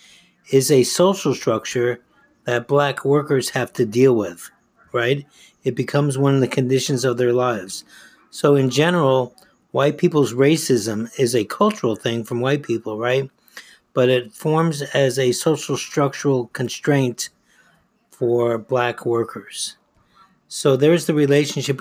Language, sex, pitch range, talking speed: English, male, 120-140 Hz, 140 wpm